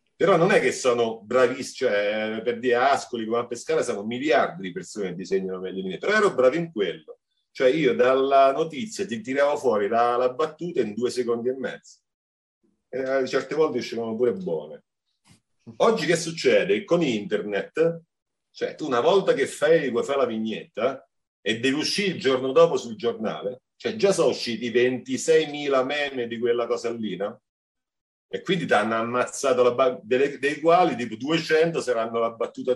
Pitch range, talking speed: 115-165 Hz, 170 wpm